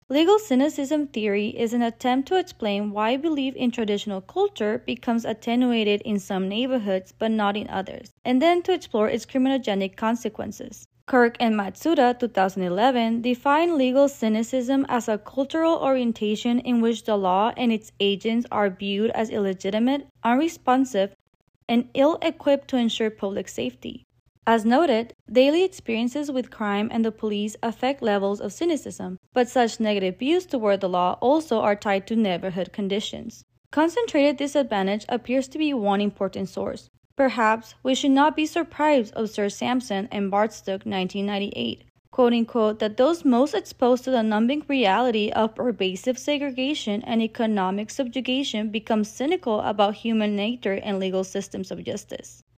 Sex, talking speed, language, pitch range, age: female, 150 wpm, English, 205-265 Hz, 20-39